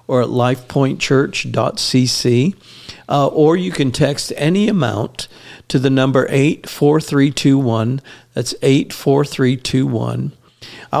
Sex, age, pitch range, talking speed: male, 50-69, 125-145 Hz, 85 wpm